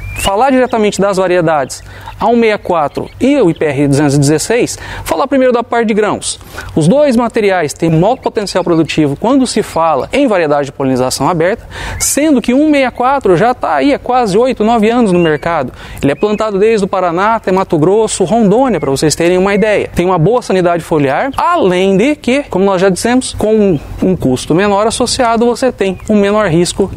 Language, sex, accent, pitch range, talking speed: Portuguese, male, Brazilian, 170-235 Hz, 180 wpm